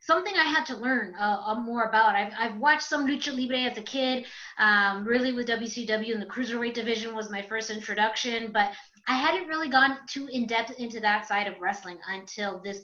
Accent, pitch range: American, 205-245 Hz